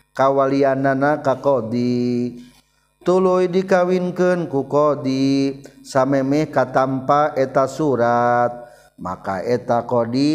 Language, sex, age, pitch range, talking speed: Indonesian, male, 40-59, 125-155 Hz, 80 wpm